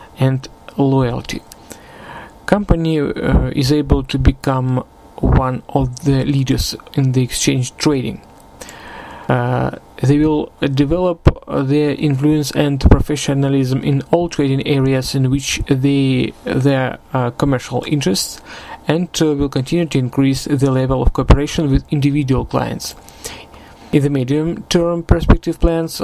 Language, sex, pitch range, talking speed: Russian, male, 130-150 Hz, 120 wpm